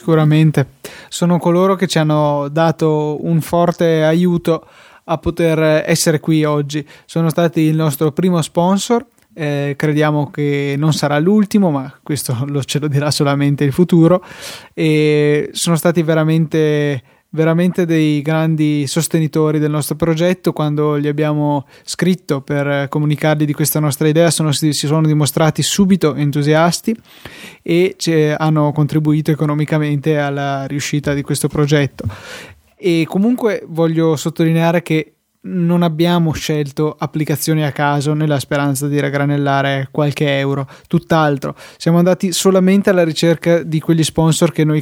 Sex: male